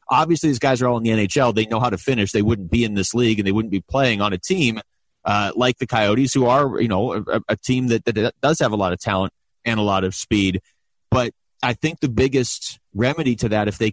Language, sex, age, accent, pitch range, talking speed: English, male, 30-49, American, 105-130 Hz, 265 wpm